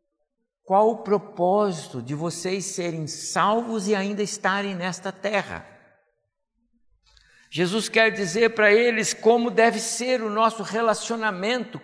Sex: male